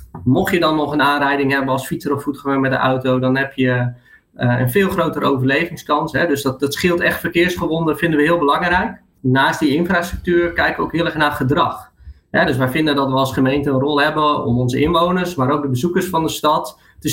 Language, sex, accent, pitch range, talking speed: Dutch, male, Dutch, 135-175 Hz, 215 wpm